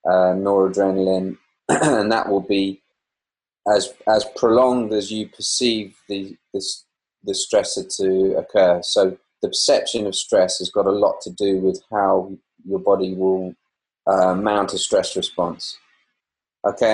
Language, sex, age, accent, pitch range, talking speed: English, male, 30-49, British, 95-110 Hz, 140 wpm